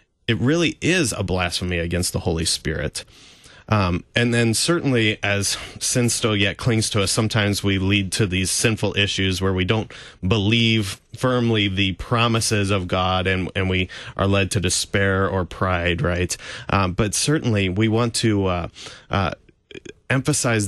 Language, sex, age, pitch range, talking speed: English, male, 30-49, 95-115 Hz, 160 wpm